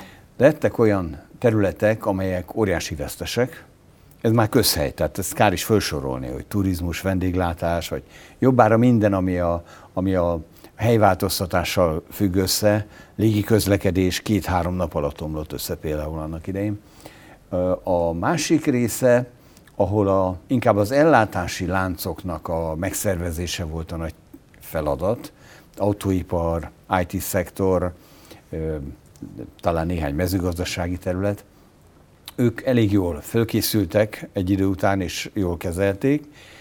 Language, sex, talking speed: Hungarian, male, 115 wpm